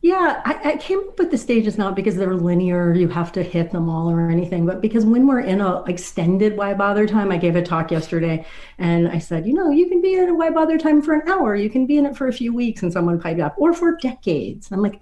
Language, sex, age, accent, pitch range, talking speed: English, female, 40-59, American, 170-260 Hz, 280 wpm